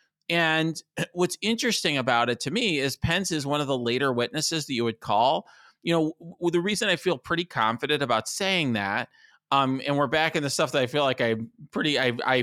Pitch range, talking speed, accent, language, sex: 125-170 Hz, 215 wpm, American, English, male